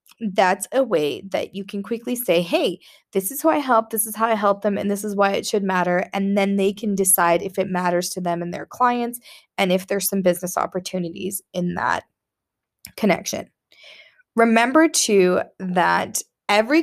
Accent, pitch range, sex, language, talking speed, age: American, 195-245 Hz, female, English, 190 wpm, 20-39